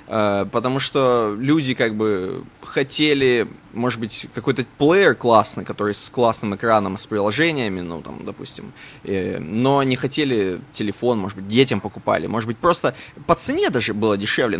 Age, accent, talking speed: 20-39, native, 150 wpm